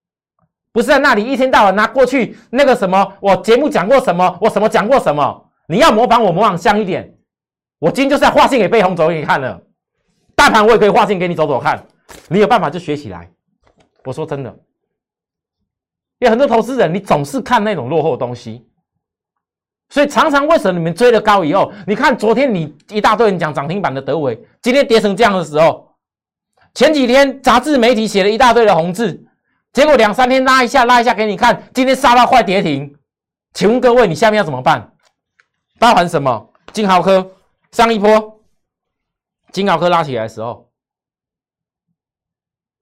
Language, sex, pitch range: Chinese, male, 180-245 Hz